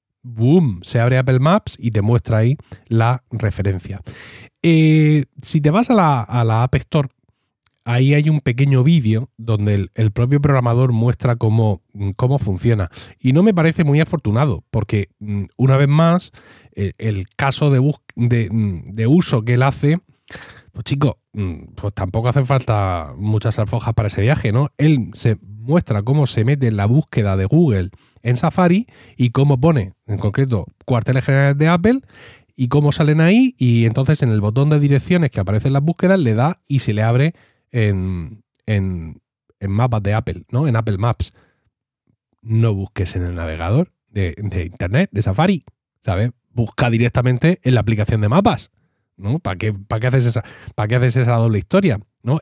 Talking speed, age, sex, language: 170 wpm, 30-49, male, Spanish